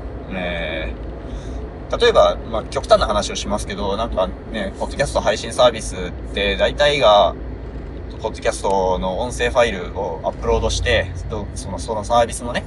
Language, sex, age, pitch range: Japanese, male, 20-39, 85-140 Hz